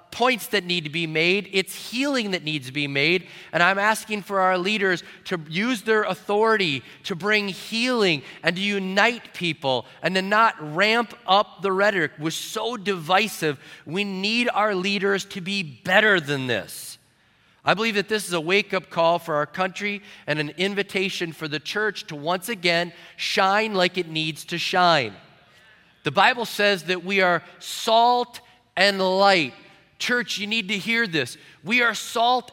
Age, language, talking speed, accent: 30-49, English, 170 wpm, American